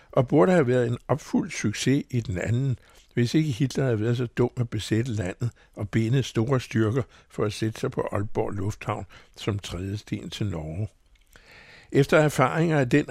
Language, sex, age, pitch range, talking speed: Danish, male, 60-79, 105-135 Hz, 180 wpm